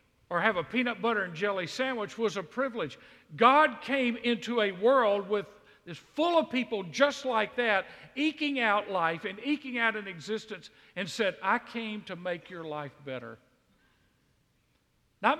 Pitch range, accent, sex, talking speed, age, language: 185-245 Hz, American, male, 155 wpm, 50-69, English